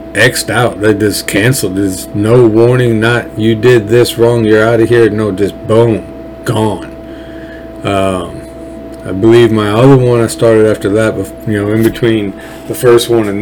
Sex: male